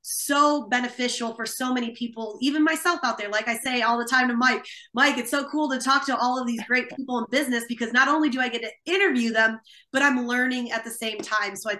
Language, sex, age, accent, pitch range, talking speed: English, female, 20-39, American, 240-310 Hz, 255 wpm